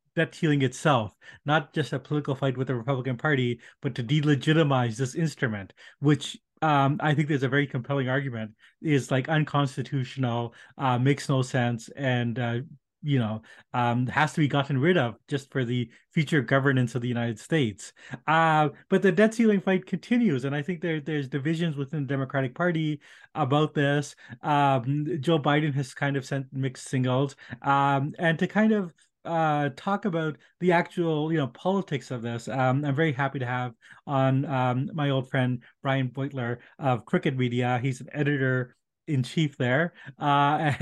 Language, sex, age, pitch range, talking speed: English, male, 30-49, 130-155 Hz, 170 wpm